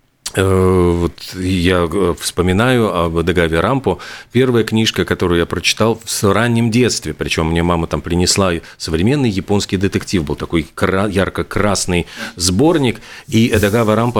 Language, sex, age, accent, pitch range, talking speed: Russian, male, 40-59, native, 90-115 Hz, 125 wpm